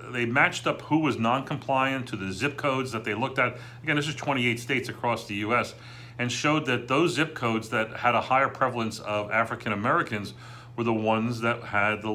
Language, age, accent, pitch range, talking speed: English, 40-59, American, 105-125 Hz, 205 wpm